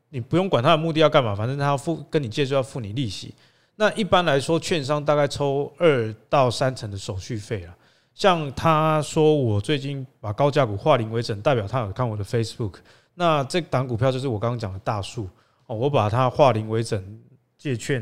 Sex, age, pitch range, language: male, 20-39, 115-150 Hz, Chinese